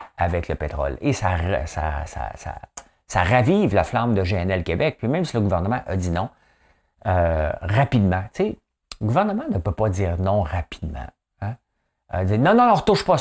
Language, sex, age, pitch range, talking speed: French, male, 50-69, 85-110 Hz, 190 wpm